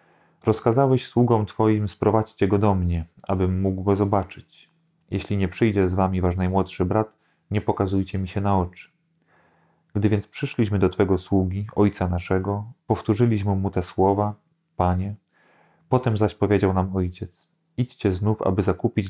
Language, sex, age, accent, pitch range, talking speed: Polish, male, 30-49, native, 95-110 Hz, 150 wpm